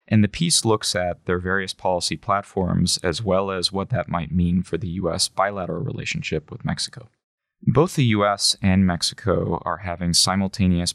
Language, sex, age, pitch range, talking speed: English, male, 20-39, 85-100 Hz, 170 wpm